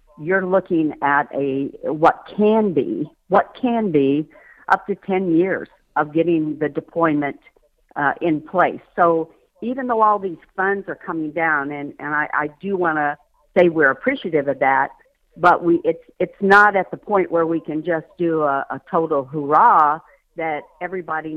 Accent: American